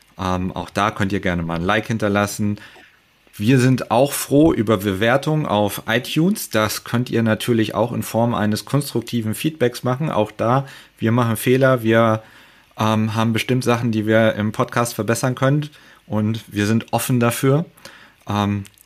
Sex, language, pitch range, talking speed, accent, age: male, German, 105-125 Hz, 160 wpm, German, 40-59